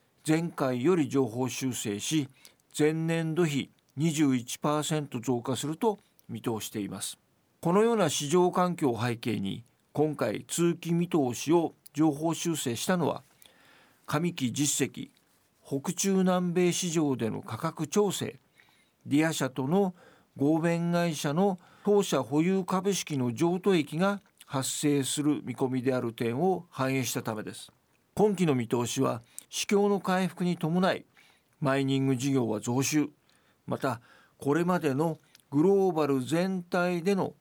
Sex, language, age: male, Japanese, 50-69